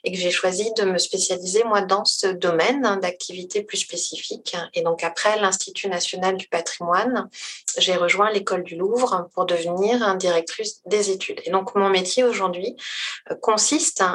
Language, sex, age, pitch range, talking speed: French, female, 30-49, 175-220 Hz, 155 wpm